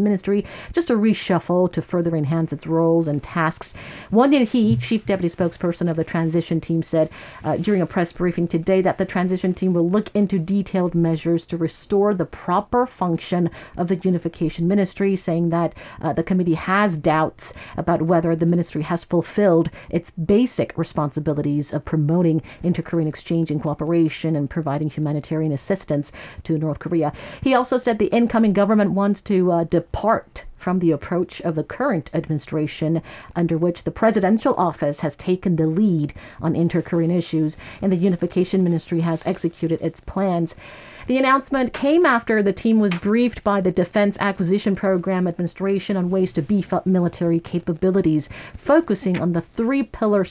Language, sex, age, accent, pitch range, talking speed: English, female, 50-69, American, 165-200 Hz, 165 wpm